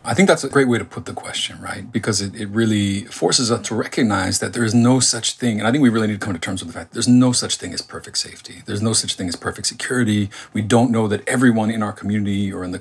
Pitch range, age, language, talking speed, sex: 95-115 Hz, 40-59, English, 300 wpm, male